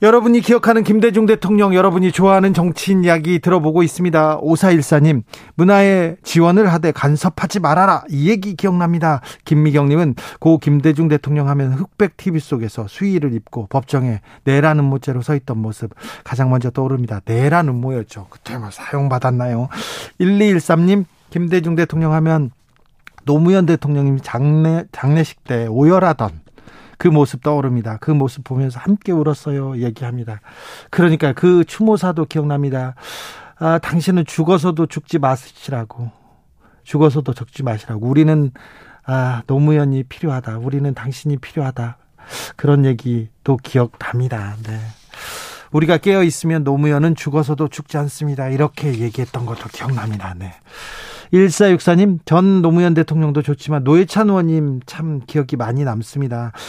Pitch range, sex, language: 125-170 Hz, male, Korean